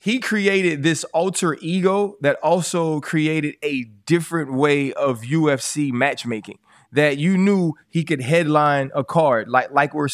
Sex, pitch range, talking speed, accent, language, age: male, 140-170 Hz, 150 wpm, American, English, 20-39